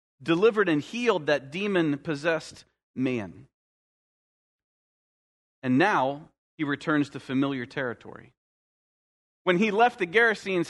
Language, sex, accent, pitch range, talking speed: English, male, American, 140-190 Hz, 100 wpm